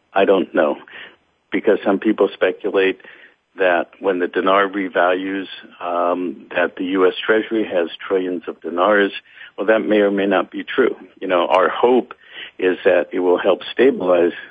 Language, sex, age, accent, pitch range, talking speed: English, male, 60-79, American, 90-110 Hz, 160 wpm